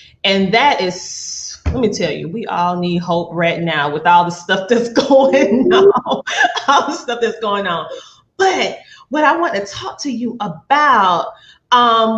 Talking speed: 175 wpm